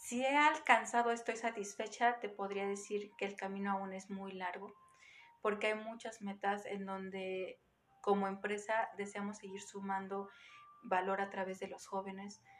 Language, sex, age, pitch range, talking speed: Spanish, female, 40-59, 195-230 Hz, 150 wpm